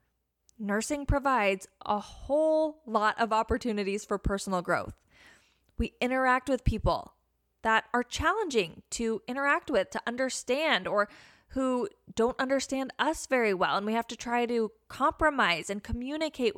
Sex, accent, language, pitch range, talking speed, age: female, American, English, 205-280 Hz, 140 wpm, 10-29